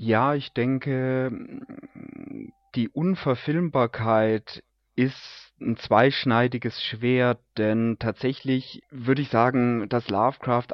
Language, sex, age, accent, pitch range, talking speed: German, male, 30-49, German, 115-130 Hz, 90 wpm